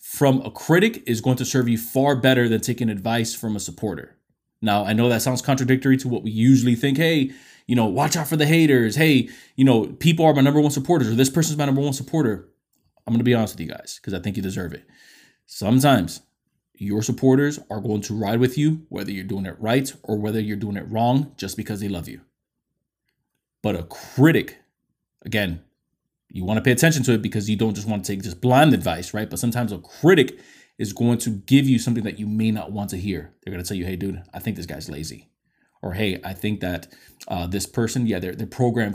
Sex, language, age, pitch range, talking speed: male, English, 20-39, 105-135 Hz, 235 wpm